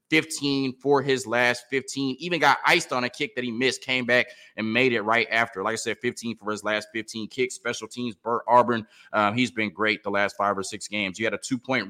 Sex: male